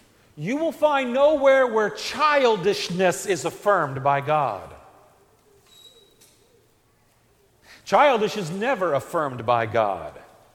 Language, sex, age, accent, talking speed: English, male, 50-69, American, 90 wpm